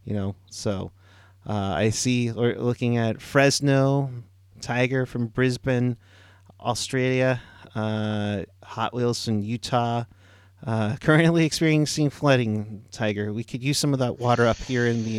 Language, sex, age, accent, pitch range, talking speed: English, male, 30-49, American, 100-130 Hz, 135 wpm